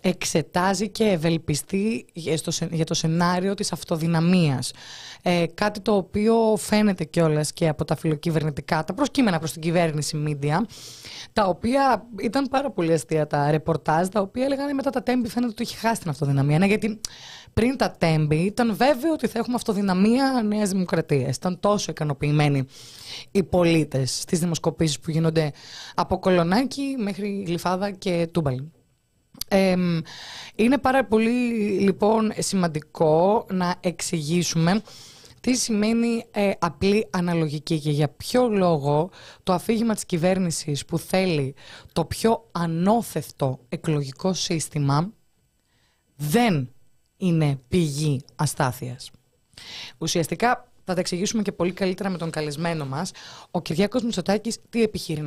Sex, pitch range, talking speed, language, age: female, 155-210 Hz, 125 wpm, Greek, 20-39